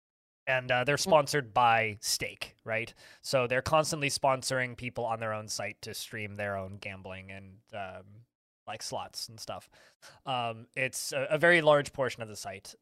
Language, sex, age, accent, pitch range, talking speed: English, male, 20-39, American, 115-155 Hz, 175 wpm